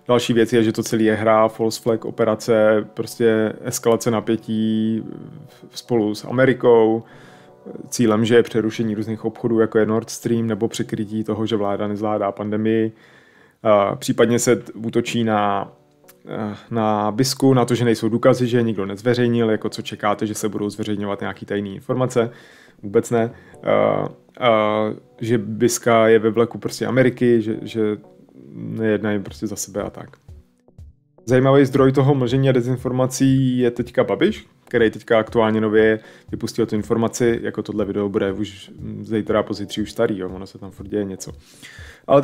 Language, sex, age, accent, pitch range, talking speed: Czech, male, 30-49, native, 105-125 Hz, 155 wpm